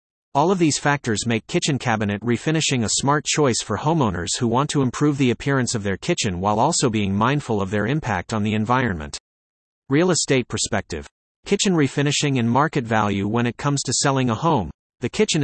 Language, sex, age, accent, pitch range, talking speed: English, male, 40-59, American, 115-150 Hz, 190 wpm